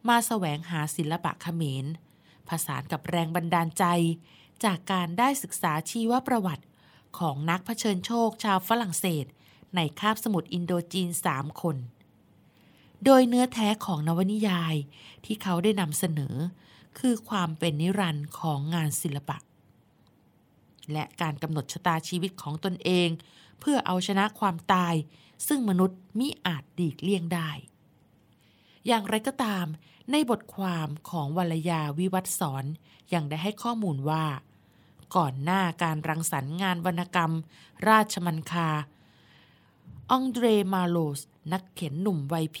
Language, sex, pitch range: Thai, female, 155-195 Hz